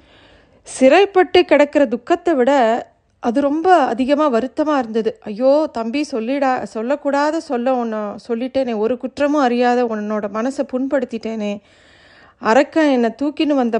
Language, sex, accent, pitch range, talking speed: Tamil, female, native, 230-285 Hz, 110 wpm